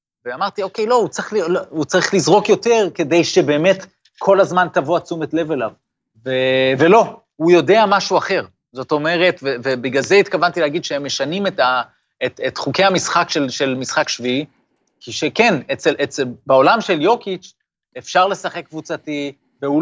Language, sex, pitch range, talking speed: Hebrew, male, 140-195 Hz, 160 wpm